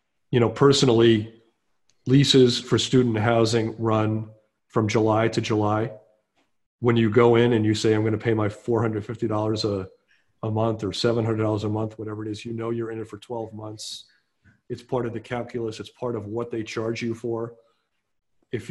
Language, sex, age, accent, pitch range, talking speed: English, male, 40-59, American, 110-120 Hz, 185 wpm